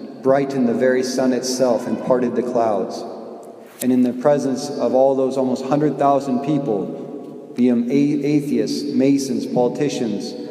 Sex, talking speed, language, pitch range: male, 130 wpm, English, 125-145 Hz